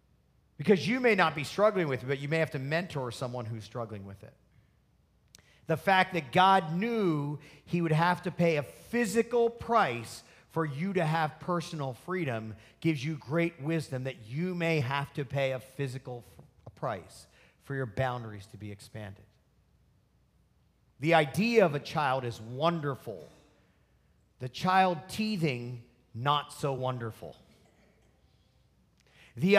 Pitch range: 120-175 Hz